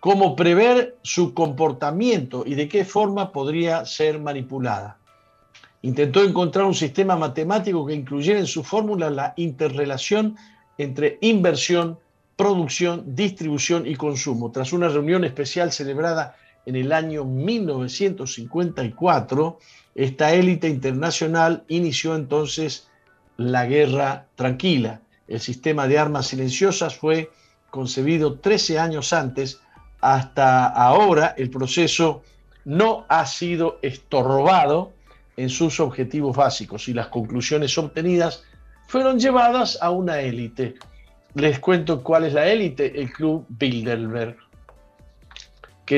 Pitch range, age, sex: 135-170 Hz, 50-69, male